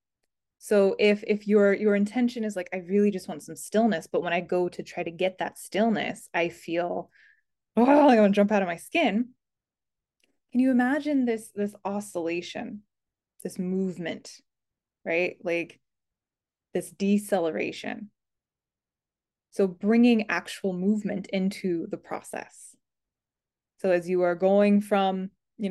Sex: female